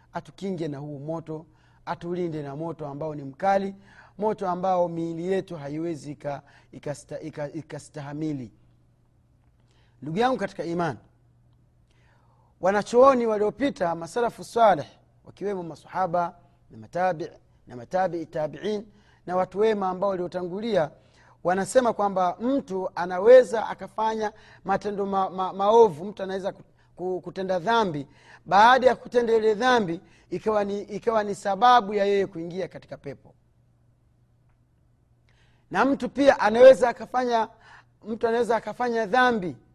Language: Swahili